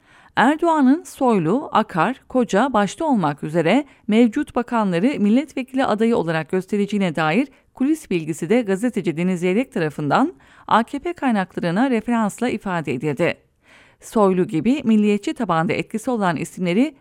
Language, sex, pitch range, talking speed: English, female, 175-260 Hz, 115 wpm